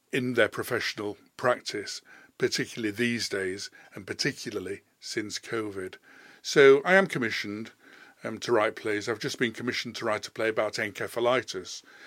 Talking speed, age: 145 wpm, 50-69